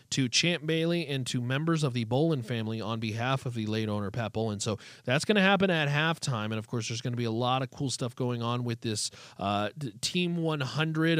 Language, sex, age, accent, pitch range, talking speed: English, male, 30-49, American, 120-185 Hz, 235 wpm